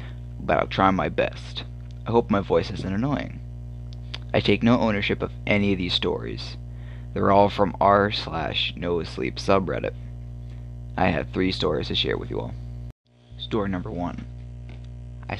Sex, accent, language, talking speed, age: male, American, English, 150 wpm, 20-39